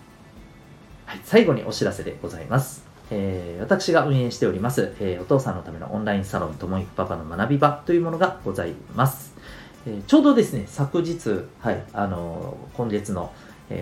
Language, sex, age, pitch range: Japanese, male, 40-59, 90-130 Hz